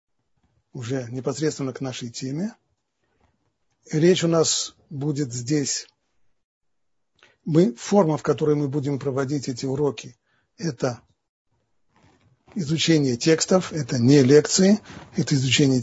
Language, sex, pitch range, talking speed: Russian, male, 130-180 Hz, 100 wpm